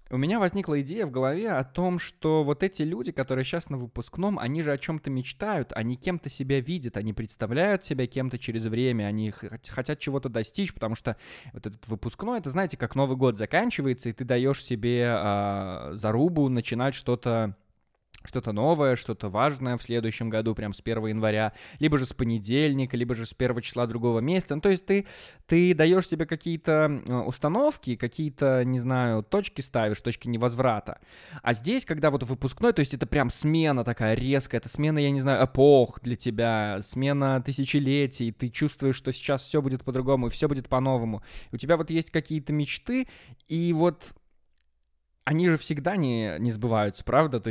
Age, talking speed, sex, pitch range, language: 20-39, 175 wpm, male, 110-150 Hz, Russian